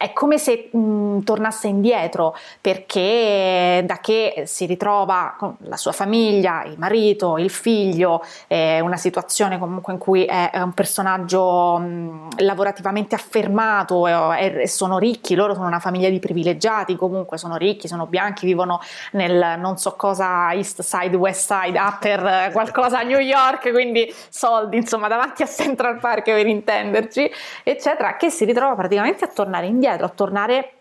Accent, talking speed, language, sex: native, 160 wpm, Italian, female